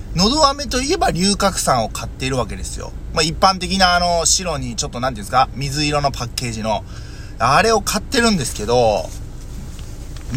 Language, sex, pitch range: Japanese, male, 120-185 Hz